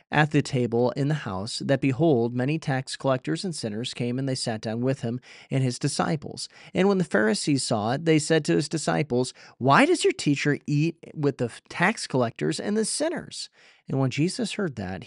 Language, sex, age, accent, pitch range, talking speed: English, male, 40-59, American, 125-165 Hz, 205 wpm